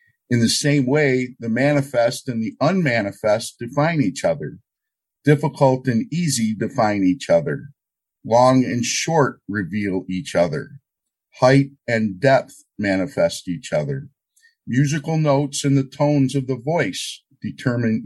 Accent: American